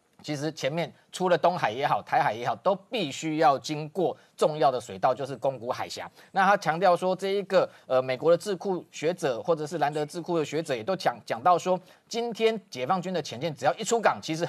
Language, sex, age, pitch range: Chinese, male, 30-49, 145-185 Hz